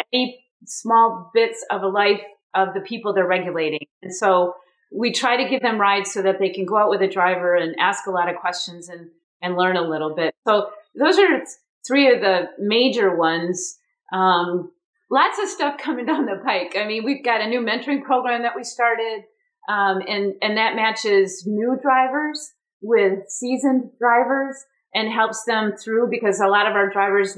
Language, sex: English, female